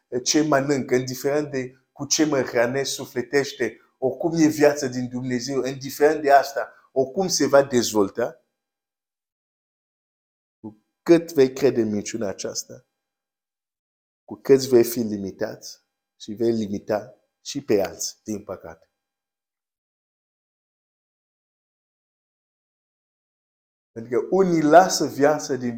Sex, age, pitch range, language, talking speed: male, 50-69, 115-140 Hz, Romanian, 110 wpm